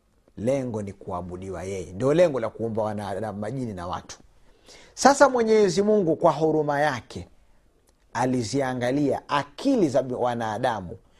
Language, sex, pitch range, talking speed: Swahili, male, 105-170 Hz, 120 wpm